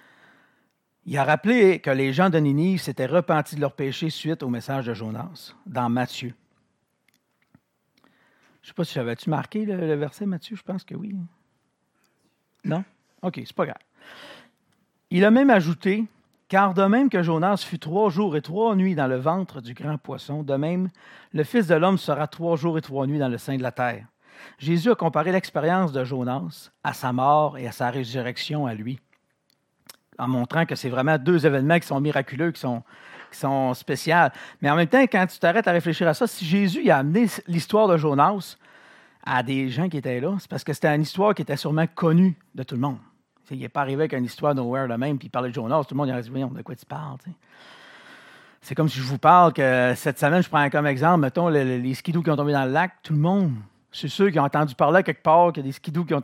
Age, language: 50-69, French